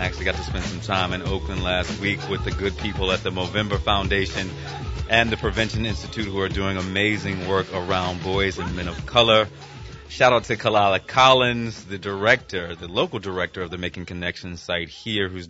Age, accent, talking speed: 30-49, American, 200 wpm